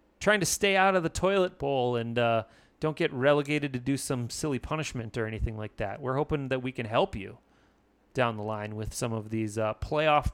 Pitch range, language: 120-155 Hz, English